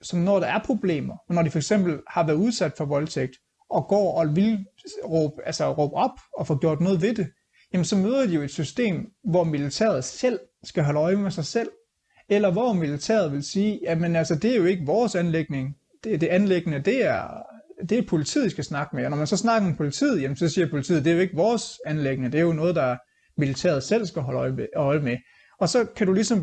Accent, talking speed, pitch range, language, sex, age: native, 230 wpm, 155-210 Hz, Danish, male, 30-49